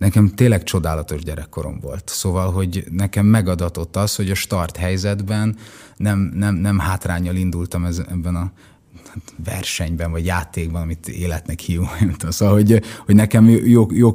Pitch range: 85-110 Hz